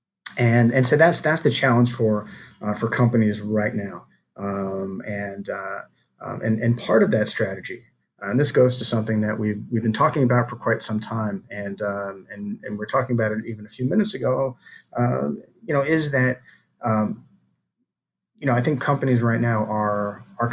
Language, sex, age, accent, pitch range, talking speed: English, male, 30-49, American, 110-125 Hz, 195 wpm